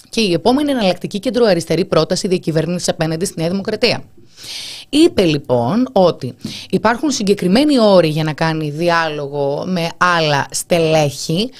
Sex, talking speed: female, 125 wpm